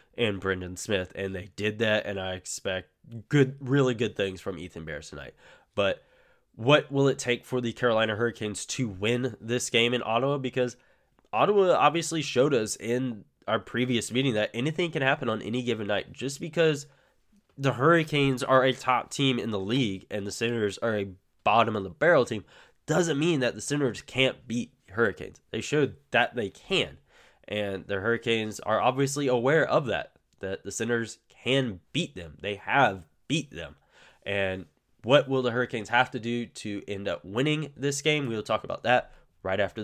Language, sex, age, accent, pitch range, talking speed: English, male, 10-29, American, 105-135 Hz, 180 wpm